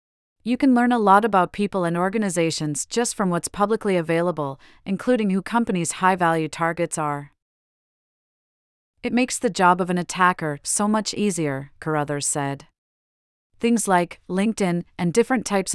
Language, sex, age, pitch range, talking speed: English, female, 30-49, 165-205 Hz, 145 wpm